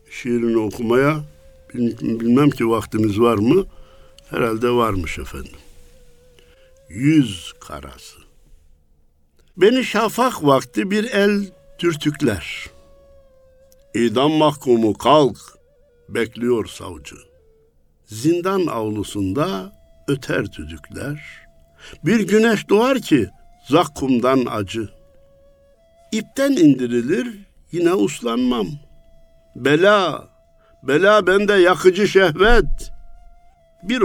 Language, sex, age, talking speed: Turkish, male, 60-79, 80 wpm